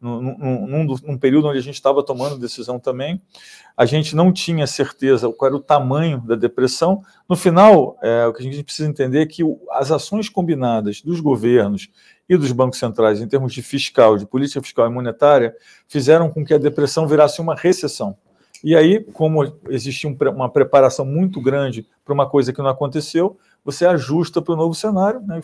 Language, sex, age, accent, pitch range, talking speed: Portuguese, male, 40-59, Brazilian, 130-170 Hz, 185 wpm